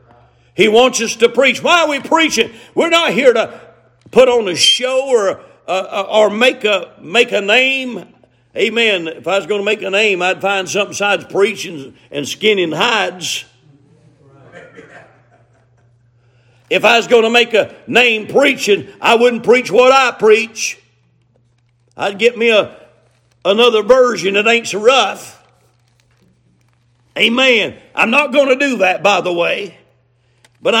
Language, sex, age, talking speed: English, male, 50-69, 150 wpm